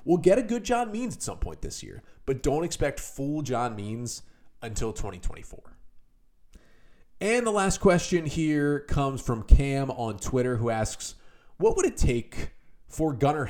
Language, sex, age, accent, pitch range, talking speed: English, male, 30-49, American, 105-150 Hz, 165 wpm